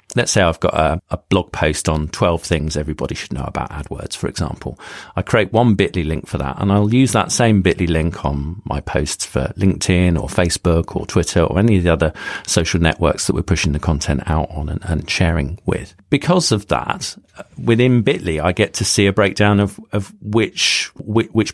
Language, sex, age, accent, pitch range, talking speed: English, male, 40-59, British, 90-120 Hz, 210 wpm